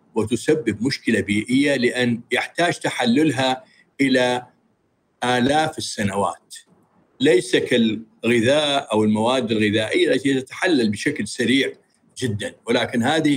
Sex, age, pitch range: male, 50-69, 110-140 Hz